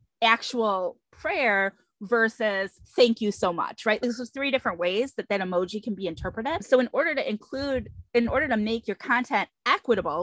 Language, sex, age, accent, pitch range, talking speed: English, female, 20-39, American, 205-255 Hz, 180 wpm